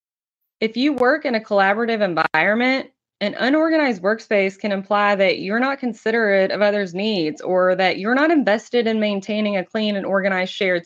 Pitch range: 205-280 Hz